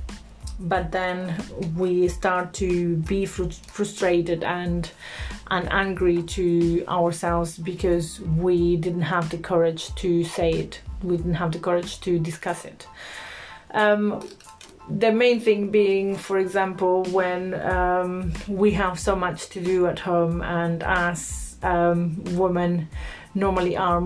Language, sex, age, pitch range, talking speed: English, female, 30-49, 170-185 Hz, 130 wpm